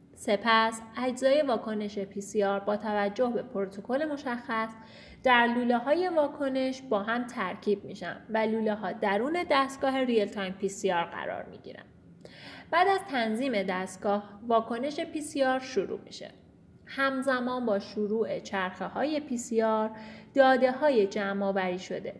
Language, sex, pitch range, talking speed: Persian, female, 205-260 Hz, 145 wpm